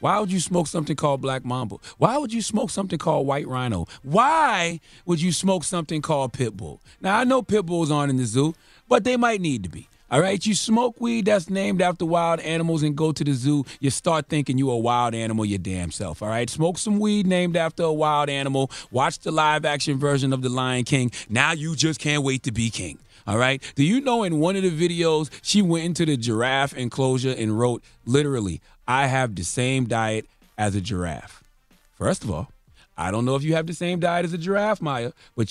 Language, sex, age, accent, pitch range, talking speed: English, male, 30-49, American, 110-155 Hz, 225 wpm